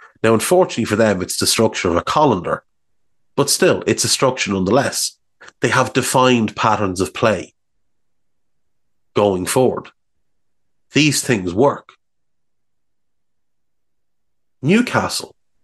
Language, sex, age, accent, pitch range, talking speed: English, male, 30-49, Irish, 105-130 Hz, 105 wpm